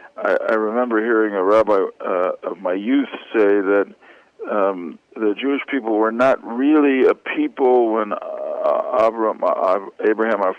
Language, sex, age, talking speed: English, male, 50-69, 135 wpm